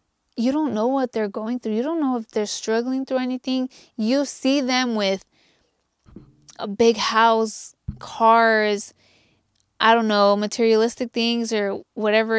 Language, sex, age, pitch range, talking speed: English, female, 20-39, 215-255 Hz, 145 wpm